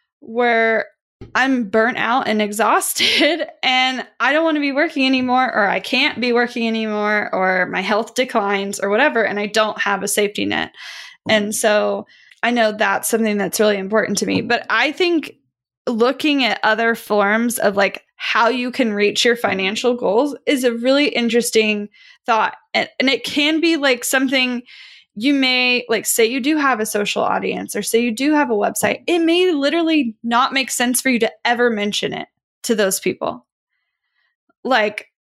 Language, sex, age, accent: English, female, 10-29, American